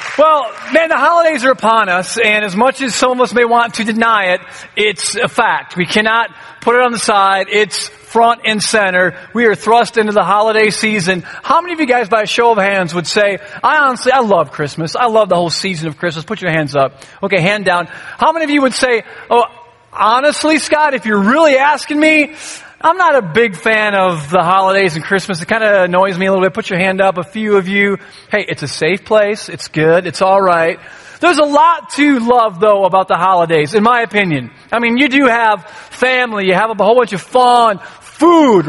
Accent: American